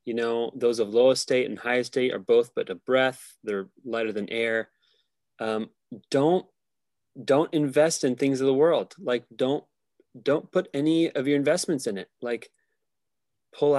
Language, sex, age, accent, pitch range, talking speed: English, male, 30-49, American, 110-140 Hz, 170 wpm